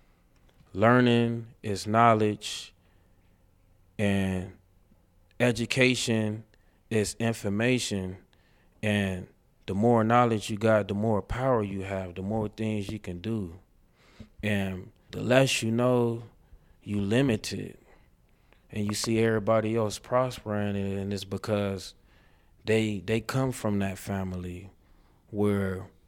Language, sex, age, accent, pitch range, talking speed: English, male, 20-39, American, 95-115 Hz, 110 wpm